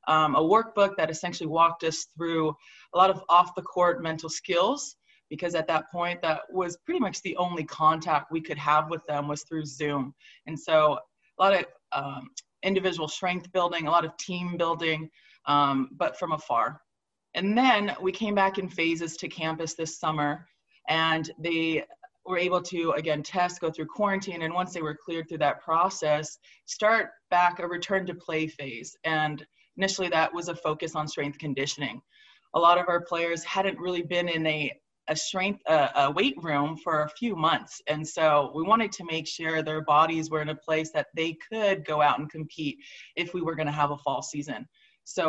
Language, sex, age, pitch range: English, female, 20-39, 155-180 Hz